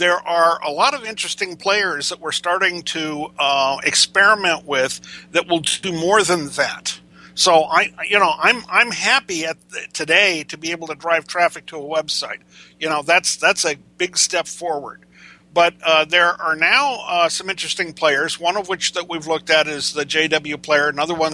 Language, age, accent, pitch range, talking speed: English, 50-69, American, 145-175 Hz, 195 wpm